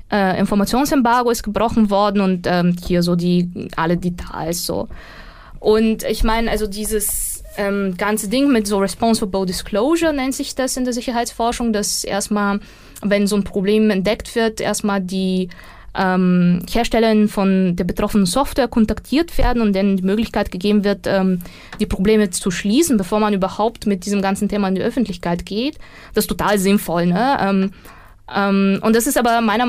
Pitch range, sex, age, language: 195-235 Hz, female, 20-39, German